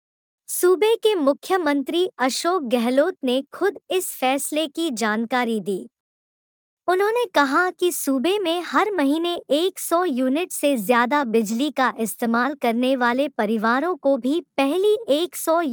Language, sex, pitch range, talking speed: Hindi, male, 245-330 Hz, 125 wpm